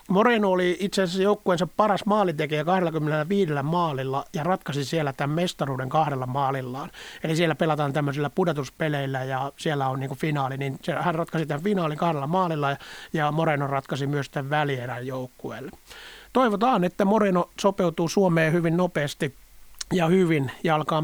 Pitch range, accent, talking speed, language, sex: 145-180 Hz, native, 145 wpm, Finnish, male